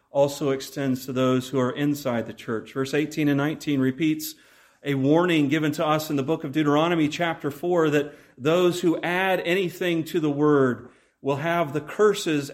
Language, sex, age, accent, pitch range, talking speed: English, male, 40-59, American, 130-155 Hz, 180 wpm